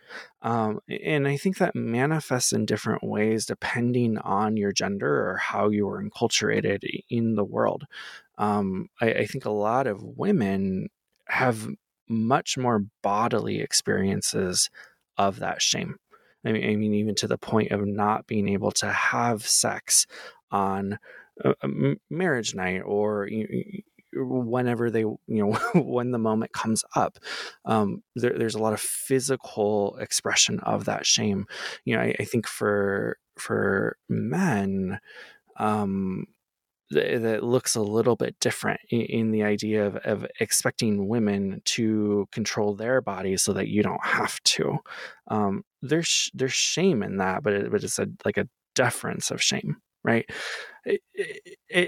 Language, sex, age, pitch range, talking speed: English, male, 20-39, 105-130 Hz, 150 wpm